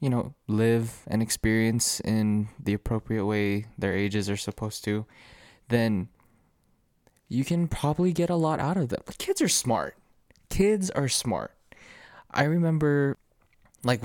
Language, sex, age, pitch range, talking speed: English, male, 20-39, 100-135 Hz, 140 wpm